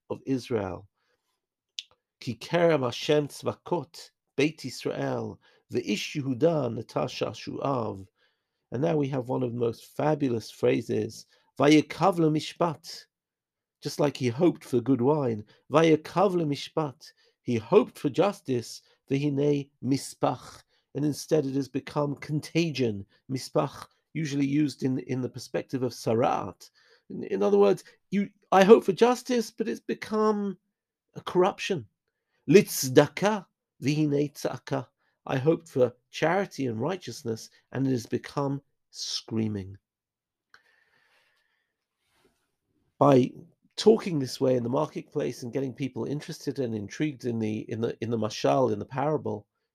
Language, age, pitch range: English, 50-69, 120-160 Hz